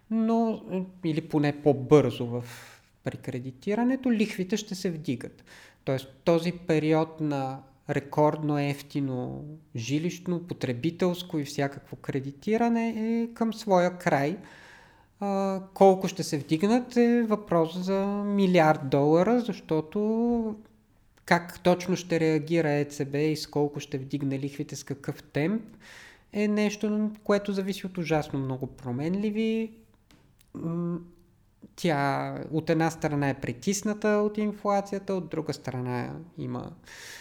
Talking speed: 110 wpm